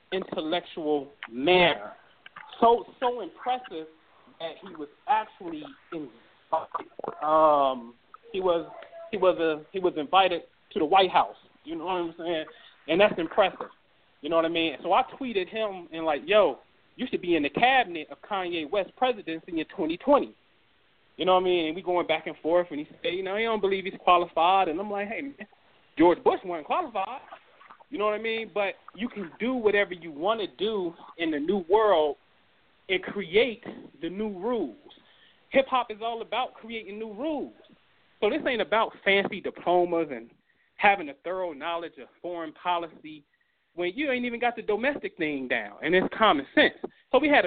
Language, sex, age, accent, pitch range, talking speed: English, male, 30-49, American, 165-225 Hz, 185 wpm